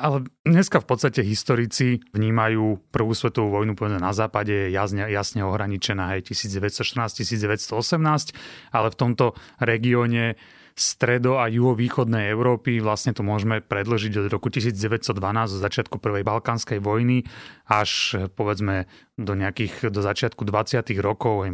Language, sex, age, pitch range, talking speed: Slovak, male, 30-49, 100-125 Hz, 125 wpm